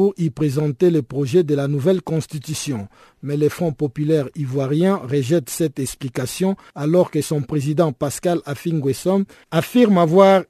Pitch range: 145-175 Hz